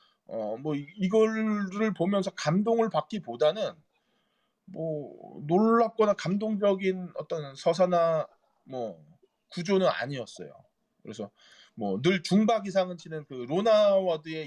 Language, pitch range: Korean, 165-245 Hz